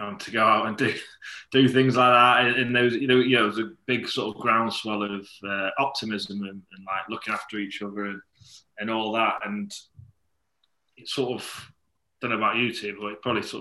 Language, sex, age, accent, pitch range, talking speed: English, male, 20-39, British, 100-120 Hz, 220 wpm